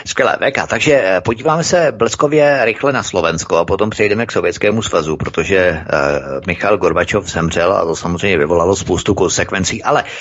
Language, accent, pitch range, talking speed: Czech, native, 100-125 Hz, 160 wpm